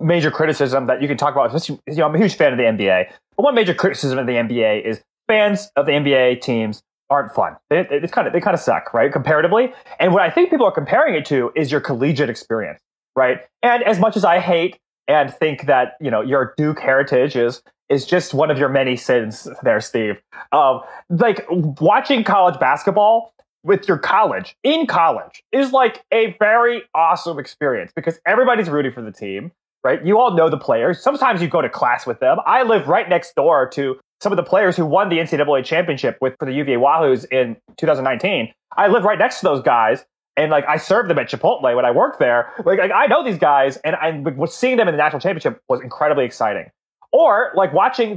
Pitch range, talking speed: 140-210 Hz, 220 wpm